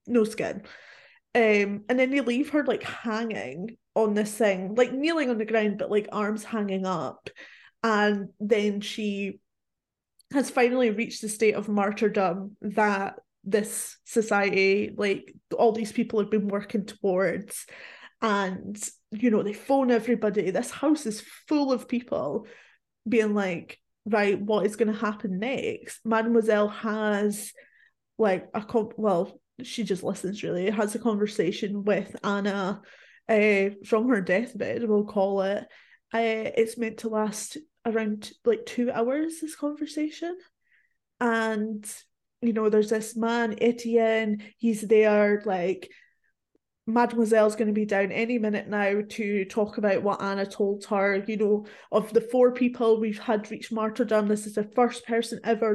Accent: British